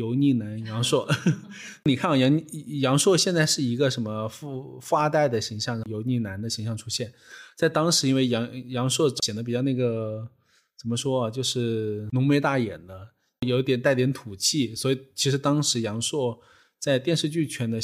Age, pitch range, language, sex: 20-39, 115-140 Hz, Chinese, male